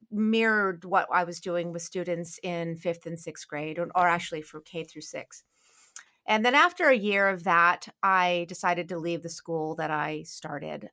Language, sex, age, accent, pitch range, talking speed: English, female, 40-59, American, 170-220 Hz, 190 wpm